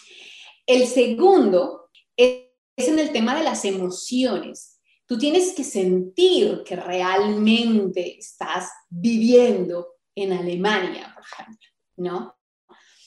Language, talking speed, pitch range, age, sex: Spanish, 100 wpm, 195-250 Hz, 20-39, female